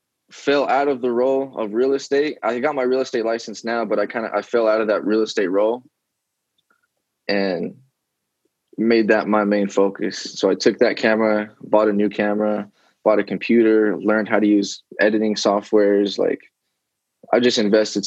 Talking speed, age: 185 wpm, 20-39